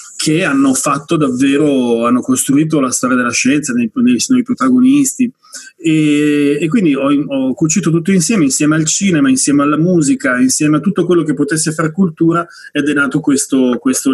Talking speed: 175 wpm